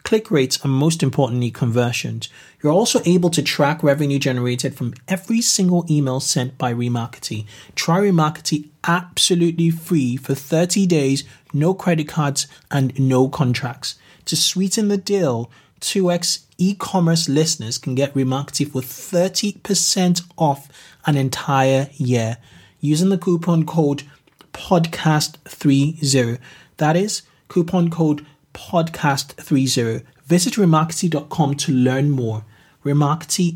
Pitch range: 130-165 Hz